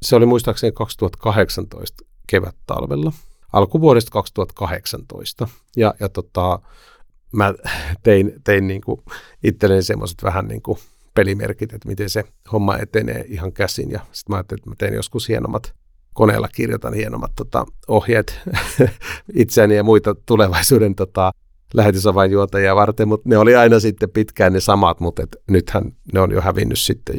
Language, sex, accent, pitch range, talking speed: Finnish, male, native, 95-115 Hz, 135 wpm